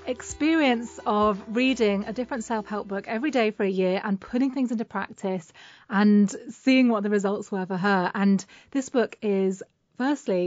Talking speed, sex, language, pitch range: 170 wpm, female, English, 195-235 Hz